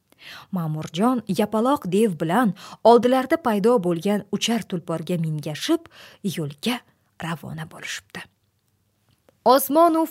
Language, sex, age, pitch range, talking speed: English, female, 30-49, 180-270 Hz, 90 wpm